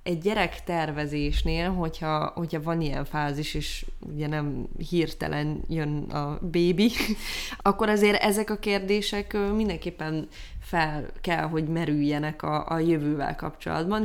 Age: 20-39